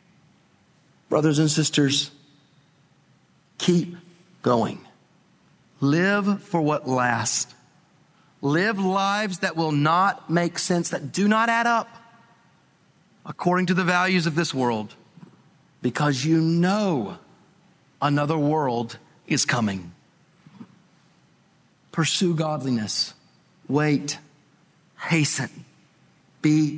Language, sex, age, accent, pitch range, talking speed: English, male, 40-59, American, 140-170 Hz, 90 wpm